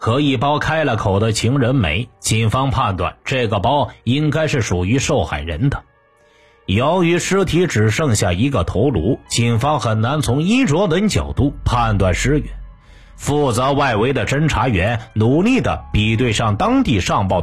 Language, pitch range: Chinese, 105-150 Hz